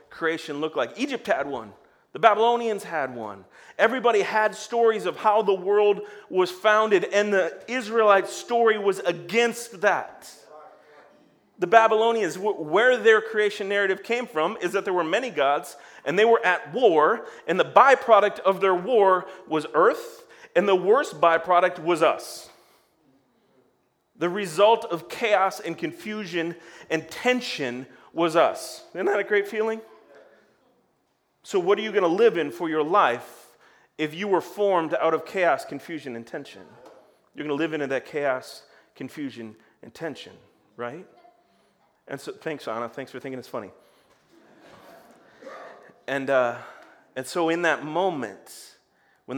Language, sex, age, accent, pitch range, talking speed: English, male, 40-59, American, 155-215 Hz, 150 wpm